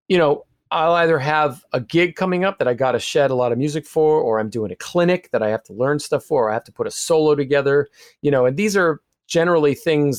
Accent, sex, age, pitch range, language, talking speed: American, male, 40-59, 130-175 Hz, English, 270 wpm